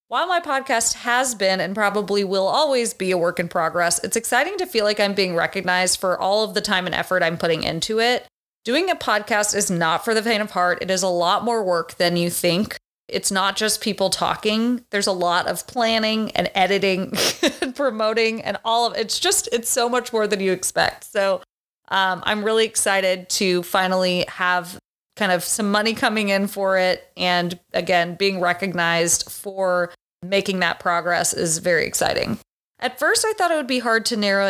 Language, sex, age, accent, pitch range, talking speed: English, female, 30-49, American, 180-225 Hz, 200 wpm